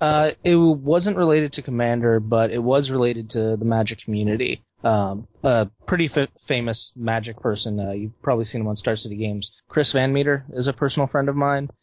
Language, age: English, 20-39